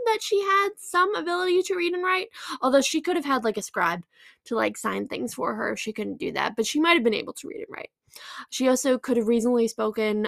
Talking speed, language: 255 wpm, English